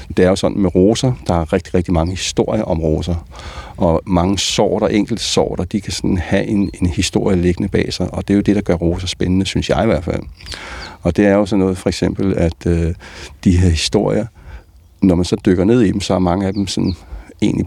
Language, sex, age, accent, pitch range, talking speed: Danish, male, 60-79, native, 85-100 Hz, 240 wpm